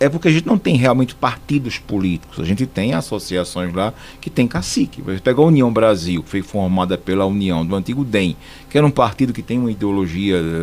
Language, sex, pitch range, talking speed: Portuguese, male, 105-140 Hz, 210 wpm